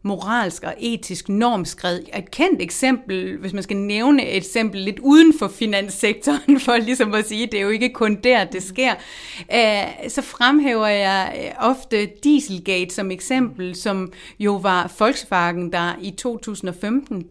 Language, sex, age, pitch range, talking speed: Danish, female, 30-49, 185-245 Hz, 150 wpm